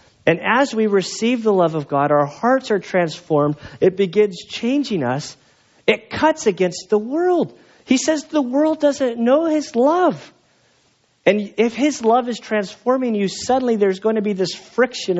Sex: male